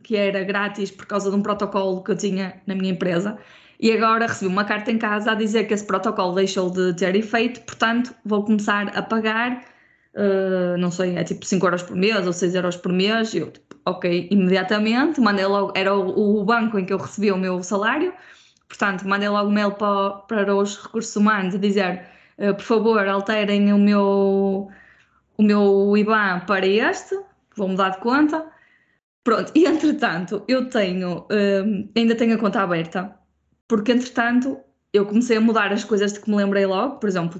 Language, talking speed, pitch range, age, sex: Portuguese, 190 wpm, 195-225 Hz, 20-39, female